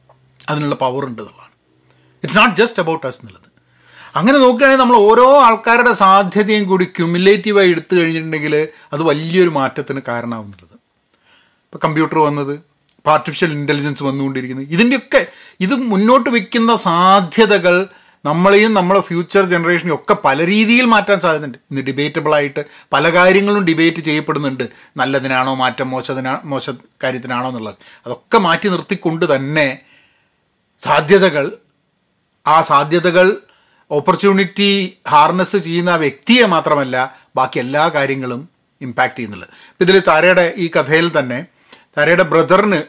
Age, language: 30-49, Malayalam